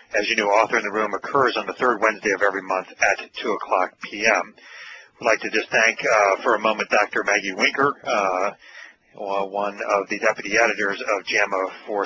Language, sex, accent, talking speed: English, male, American, 200 wpm